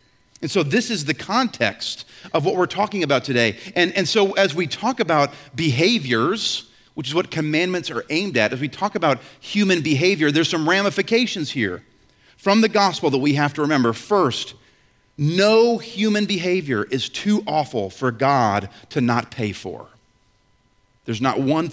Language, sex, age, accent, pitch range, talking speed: English, male, 40-59, American, 130-195 Hz, 170 wpm